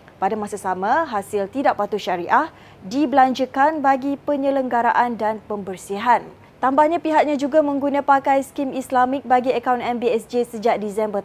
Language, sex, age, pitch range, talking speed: Malay, female, 20-39, 225-280 Hz, 130 wpm